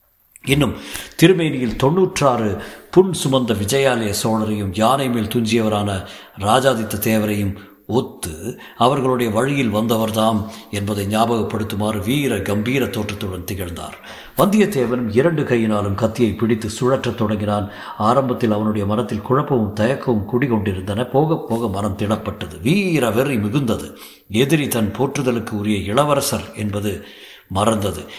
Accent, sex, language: native, male, Tamil